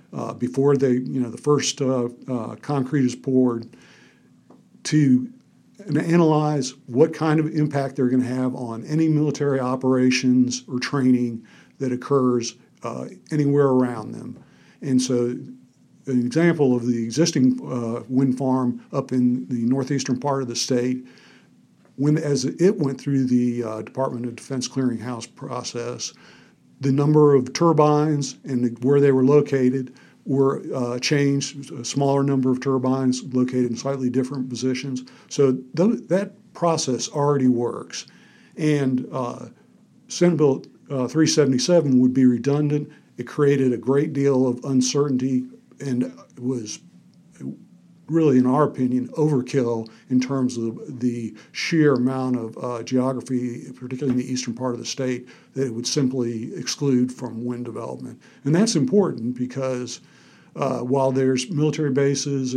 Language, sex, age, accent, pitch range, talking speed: English, male, 50-69, American, 125-145 Hz, 145 wpm